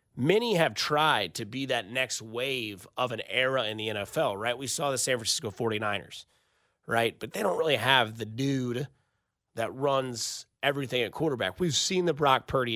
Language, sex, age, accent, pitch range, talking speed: English, male, 30-49, American, 115-145 Hz, 185 wpm